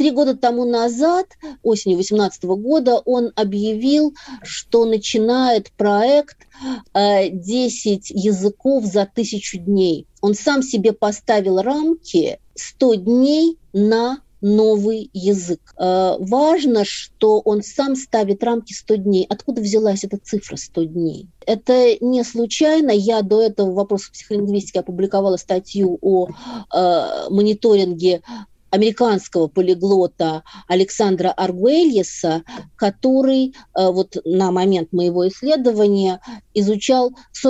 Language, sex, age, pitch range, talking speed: Russian, female, 40-59, 185-245 Hz, 105 wpm